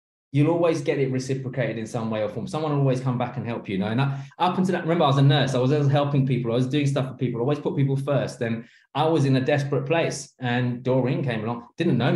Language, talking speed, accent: English, 275 wpm, British